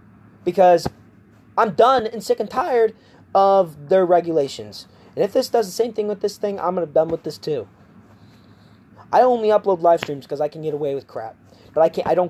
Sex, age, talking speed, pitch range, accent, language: male, 30-49, 210 wpm, 130-210 Hz, American, English